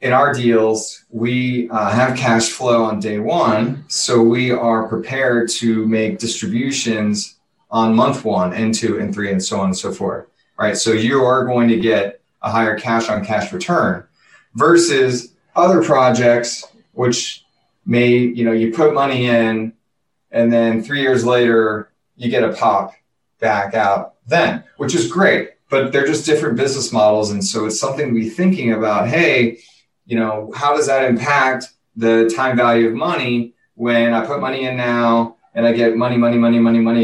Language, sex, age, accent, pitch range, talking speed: English, male, 30-49, American, 115-130 Hz, 180 wpm